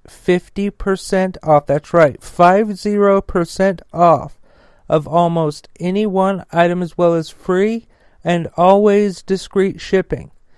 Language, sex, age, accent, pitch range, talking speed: English, male, 40-59, American, 155-180 Hz, 110 wpm